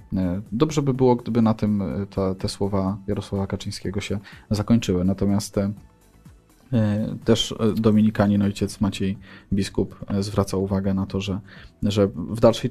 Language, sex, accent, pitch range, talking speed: Polish, male, native, 100-120 Hz, 125 wpm